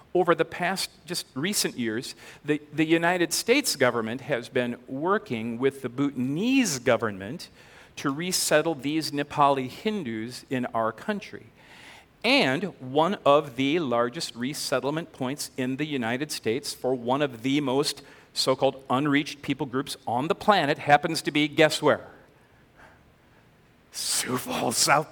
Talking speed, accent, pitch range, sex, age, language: 135 wpm, American, 140-225 Hz, male, 50-69, English